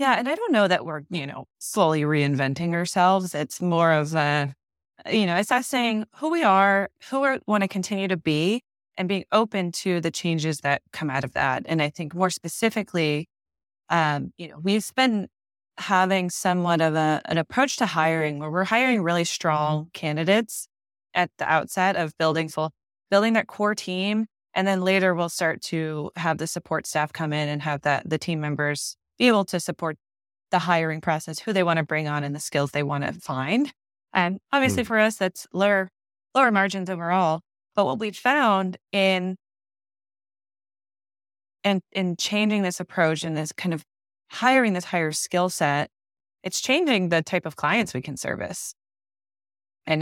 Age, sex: 20-39, female